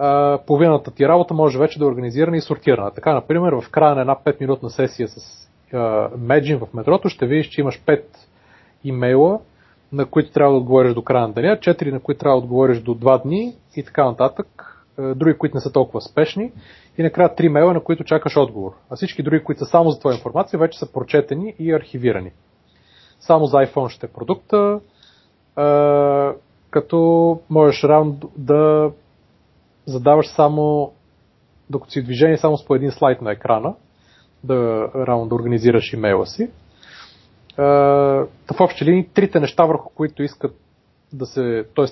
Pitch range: 120-155 Hz